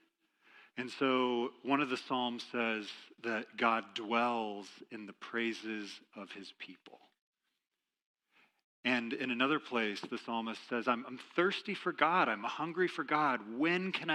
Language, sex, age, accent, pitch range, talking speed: English, male, 40-59, American, 115-140 Hz, 145 wpm